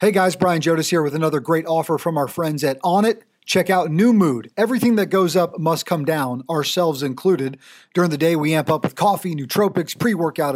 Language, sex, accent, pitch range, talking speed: English, male, American, 145-190 Hz, 210 wpm